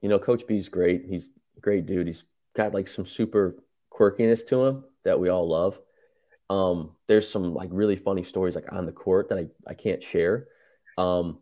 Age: 20-39